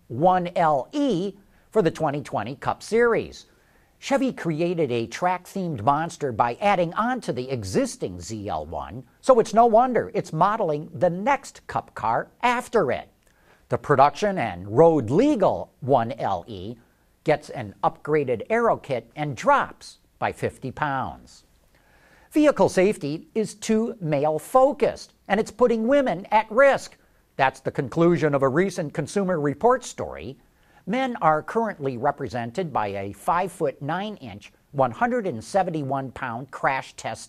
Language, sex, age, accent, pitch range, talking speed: English, male, 50-69, American, 145-220 Hz, 120 wpm